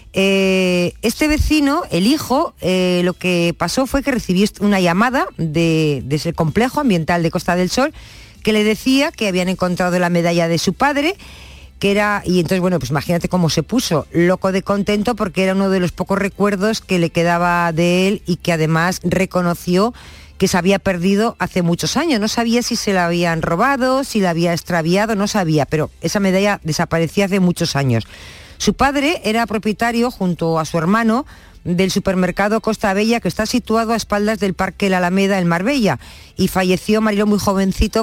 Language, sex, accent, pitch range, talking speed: Spanish, female, Spanish, 175-225 Hz, 185 wpm